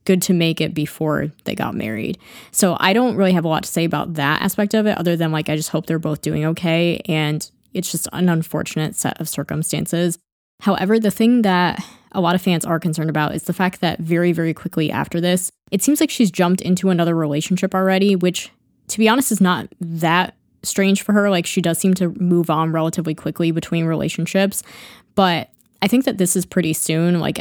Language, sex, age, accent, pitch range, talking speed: English, female, 20-39, American, 160-185 Hz, 215 wpm